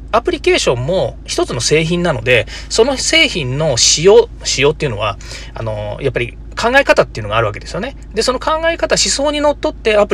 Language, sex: Japanese, male